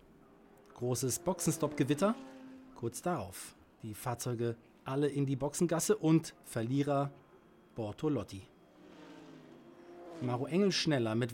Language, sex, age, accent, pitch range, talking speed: German, male, 40-59, German, 115-165 Hz, 90 wpm